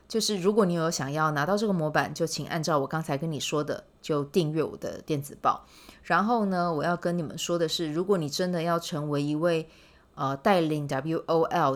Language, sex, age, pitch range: Chinese, female, 20-39, 140-170 Hz